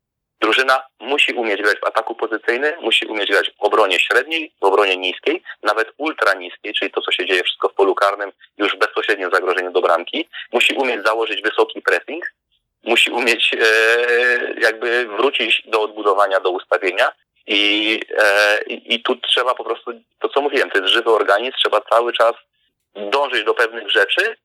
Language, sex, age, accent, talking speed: Polish, male, 30-49, native, 170 wpm